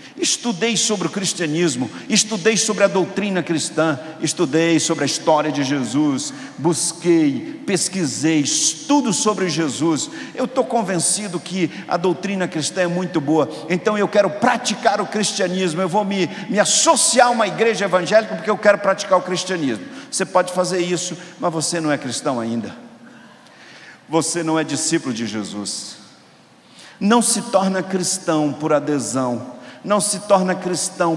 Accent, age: Brazilian, 50-69